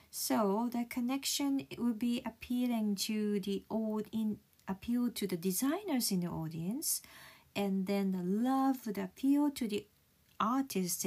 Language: Japanese